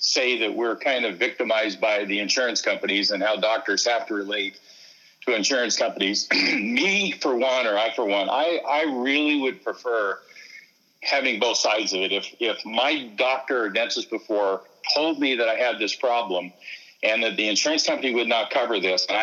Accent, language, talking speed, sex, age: American, English, 185 wpm, male, 50-69